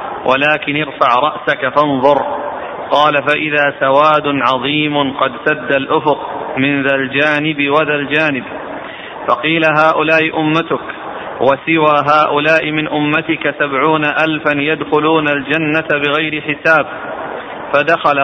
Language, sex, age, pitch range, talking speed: Arabic, male, 40-59, 145-155 Hz, 100 wpm